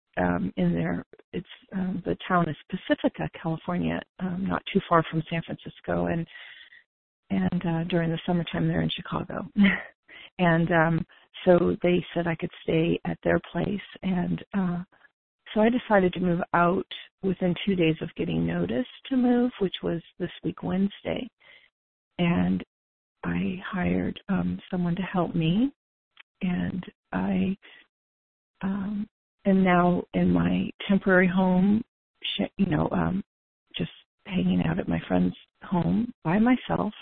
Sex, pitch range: female, 155-190 Hz